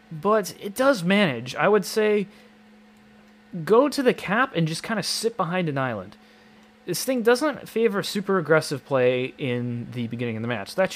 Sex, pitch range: male, 135-205 Hz